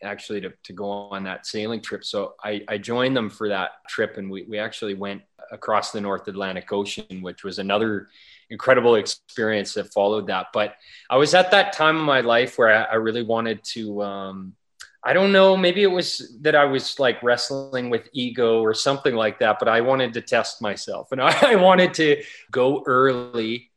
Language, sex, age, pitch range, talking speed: English, male, 20-39, 100-125 Hz, 200 wpm